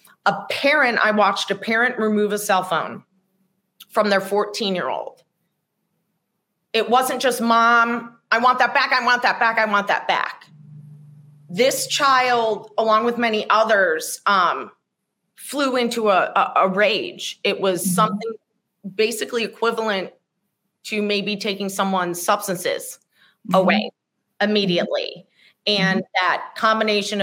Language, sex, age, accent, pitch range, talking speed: English, female, 30-49, American, 190-230 Hz, 125 wpm